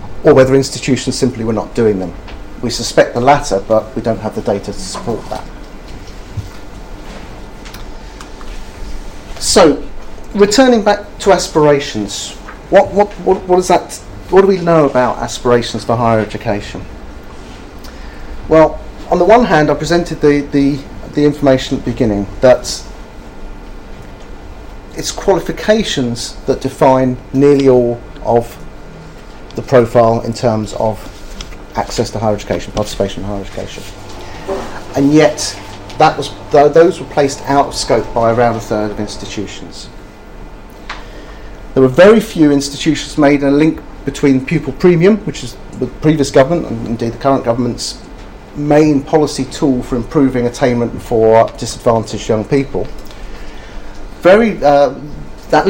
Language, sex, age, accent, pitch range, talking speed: English, male, 40-59, British, 105-150 Hz, 140 wpm